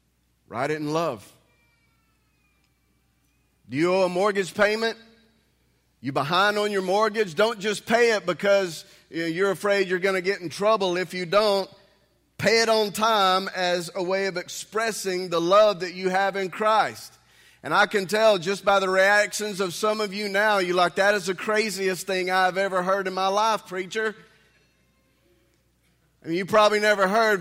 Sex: male